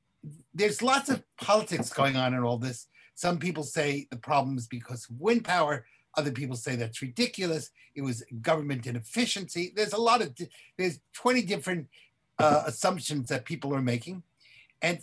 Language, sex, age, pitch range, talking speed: English, male, 60-79, 130-180 Hz, 170 wpm